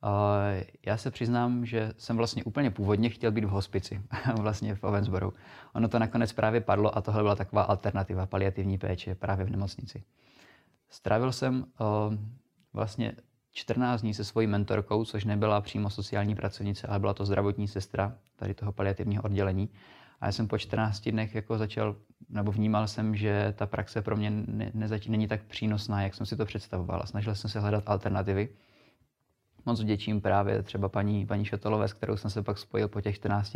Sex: male